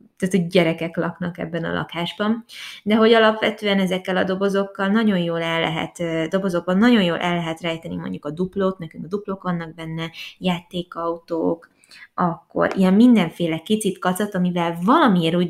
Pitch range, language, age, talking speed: 165-200 Hz, Hungarian, 20-39, 155 wpm